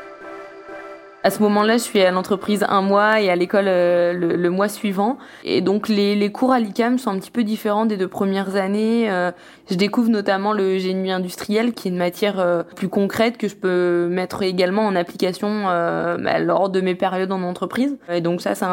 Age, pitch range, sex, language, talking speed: 20-39, 180-210 Hz, female, French, 190 wpm